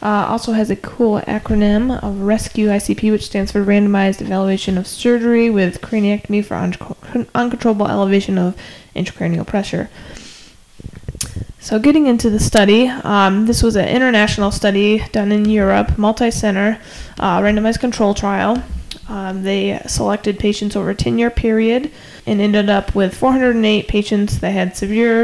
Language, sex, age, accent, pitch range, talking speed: English, female, 20-39, American, 195-220 Hz, 140 wpm